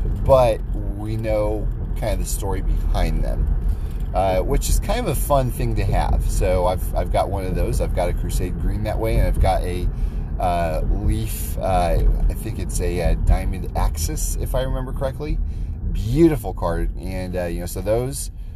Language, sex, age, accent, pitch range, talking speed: English, male, 30-49, American, 85-110 Hz, 190 wpm